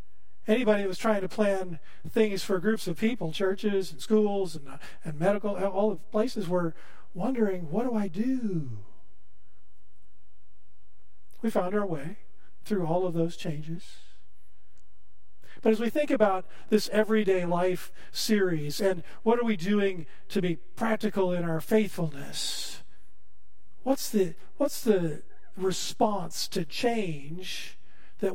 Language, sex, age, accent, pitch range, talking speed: English, male, 50-69, American, 155-205 Hz, 135 wpm